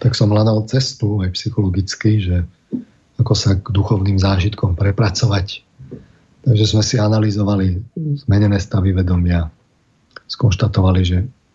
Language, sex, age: Slovak, male, 40-59